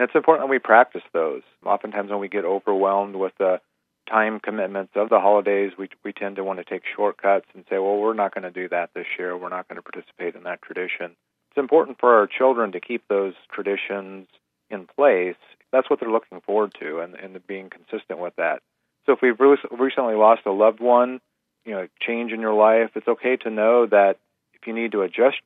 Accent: American